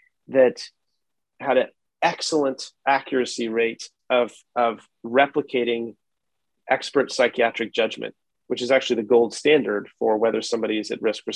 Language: English